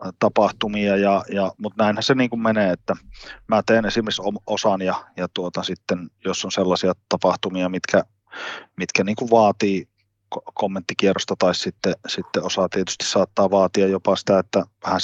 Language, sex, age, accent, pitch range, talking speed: Finnish, male, 30-49, native, 90-105 Hz, 155 wpm